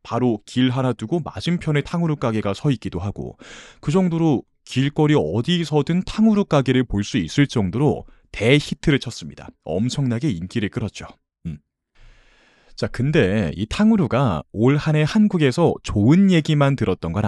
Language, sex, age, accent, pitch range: Korean, male, 30-49, native, 105-160 Hz